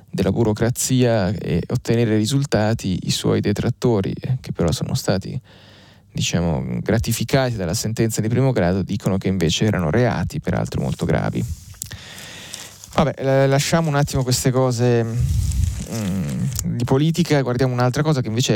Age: 20-39